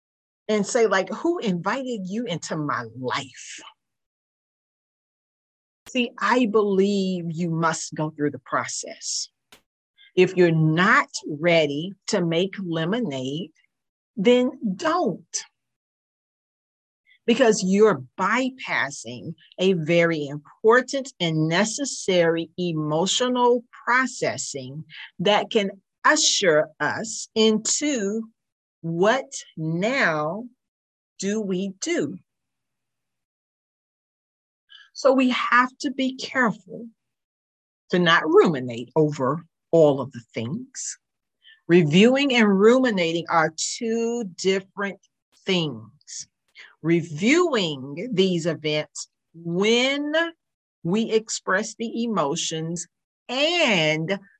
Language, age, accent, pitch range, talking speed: English, 50-69, American, 160-235 Hz, 85 wpm